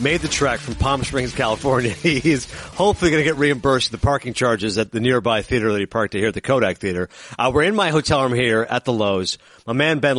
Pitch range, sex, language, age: 115-150 Hz, male, English, 50-69